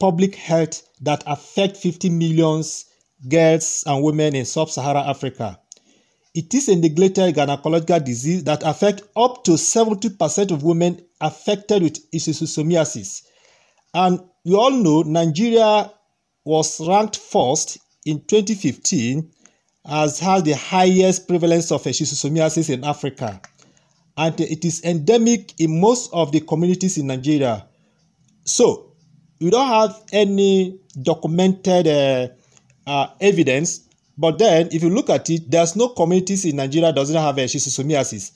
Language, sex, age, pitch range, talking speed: English, male, 40-59, 150-185 Hz, 130 wpm